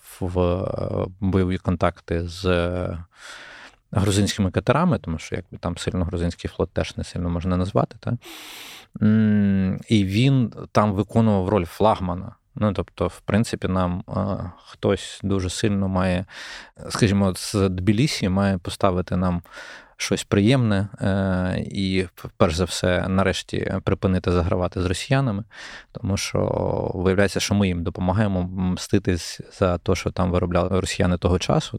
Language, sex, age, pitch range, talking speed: Ukrainian, male, 20-39, 90-105 Hz, 125 wpm